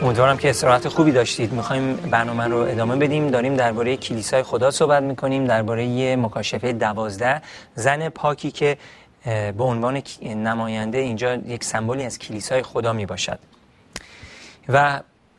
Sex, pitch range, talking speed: male, 115-150 Hz, 135 wpm